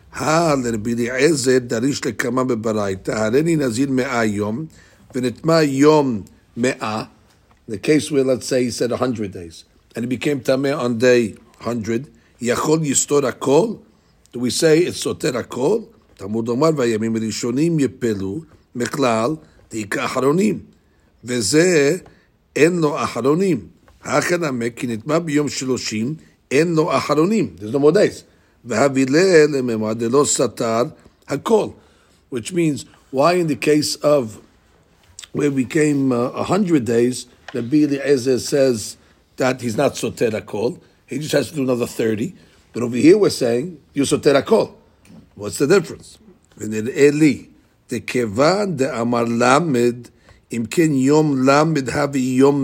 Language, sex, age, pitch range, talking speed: English, male, 60-79, 115-145 Hz, 80 wpm